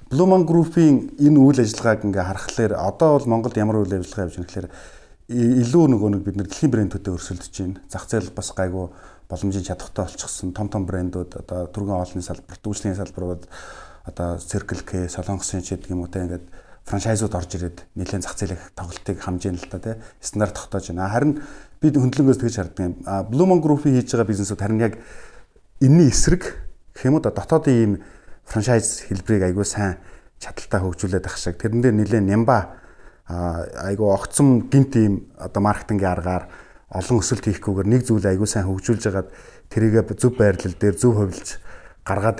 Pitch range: 90-115 Hz